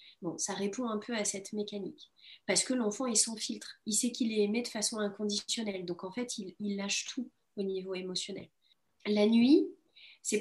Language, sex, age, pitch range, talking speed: French, female, 30-49, 205-255 Hz, 200 wpm